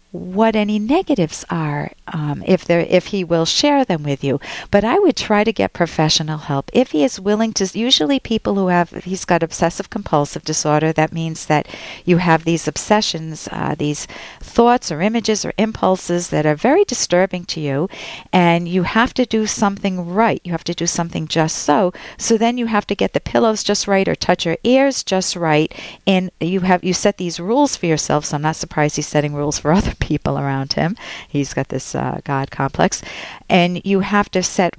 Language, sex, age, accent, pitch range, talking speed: English, female, 50-69, American, 150-200 Hz, 200 wpm